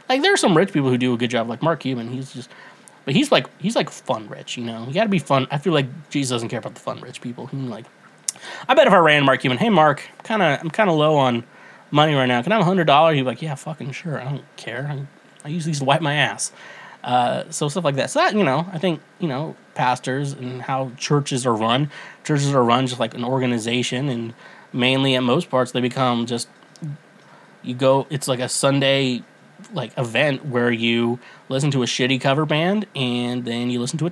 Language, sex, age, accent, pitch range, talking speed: English, male, 20-39, American, 125-170 Hz, 245 wpm